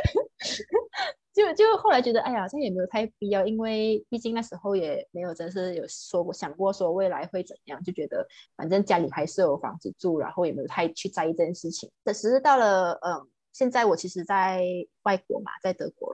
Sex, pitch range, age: female, 170-215 Hz, 20-39